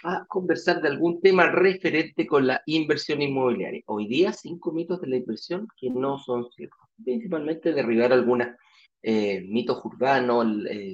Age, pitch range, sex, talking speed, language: 40-59, 130-200 Hz, male, 155 wpm, Spanish